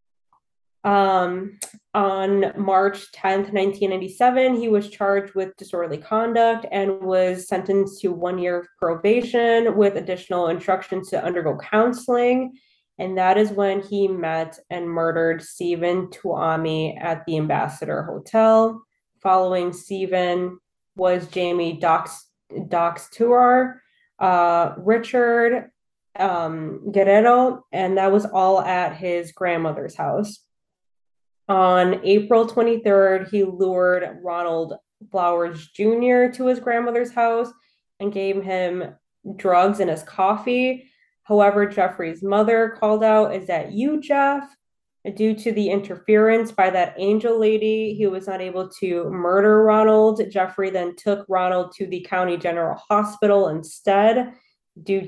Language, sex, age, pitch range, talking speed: English, female, 20-39, 180-215 Hz, 120 wpm